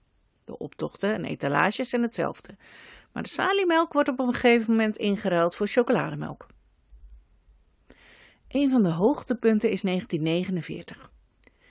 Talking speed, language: 120 wpm, Dutch